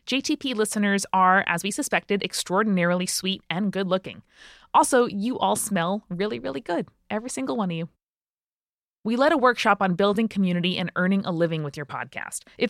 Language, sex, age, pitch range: English, female, 20-39, 175-235 Hz